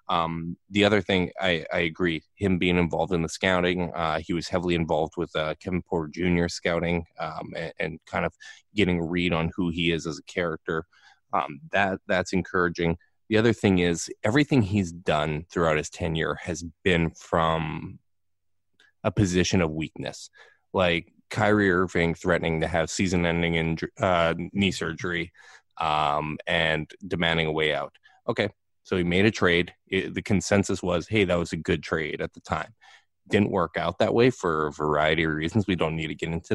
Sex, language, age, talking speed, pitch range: male, English, 20-39, 185 wpm, 80-95 Hz